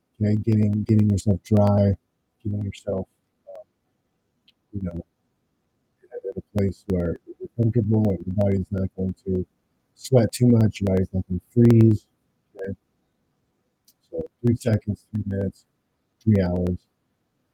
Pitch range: 95-115 Hz